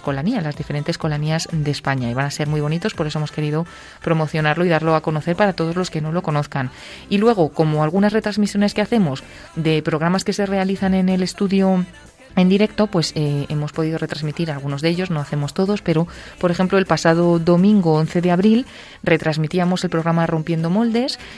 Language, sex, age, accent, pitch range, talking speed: Spanish, female, 20-39, Spanish, 155-185 Hz, 195 wpm